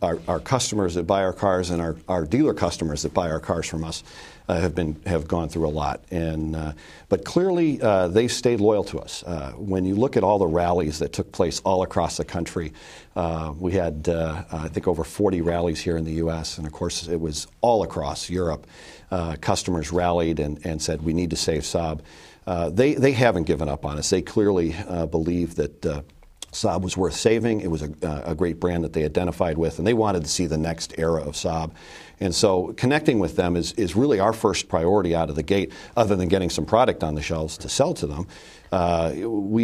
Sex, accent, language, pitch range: male, American, English, 80-90 Hz